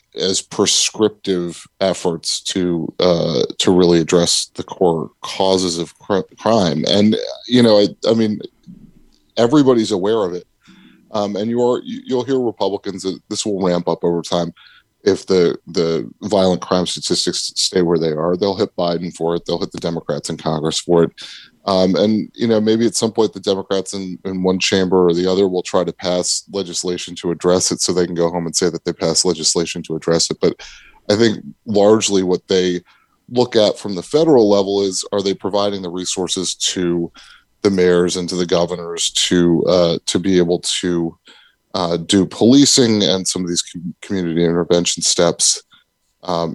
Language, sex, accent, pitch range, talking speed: English, male, American, 90-105 Hz, 185 wpm